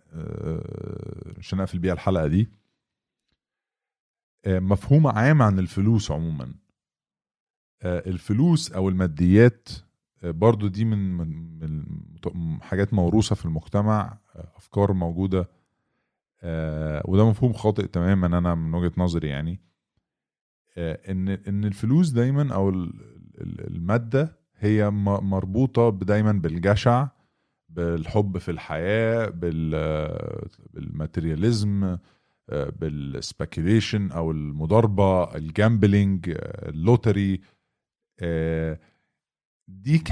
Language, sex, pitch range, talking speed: English, male, 85-110 Hz, 75 wpm